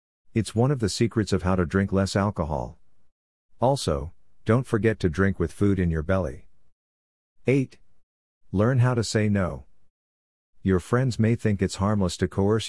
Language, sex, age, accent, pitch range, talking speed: English, male, 50-69, American, 80-105 Hz, 165 wpm